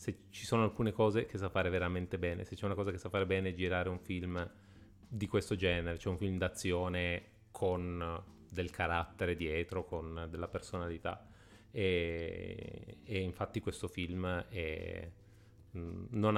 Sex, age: male, 30-49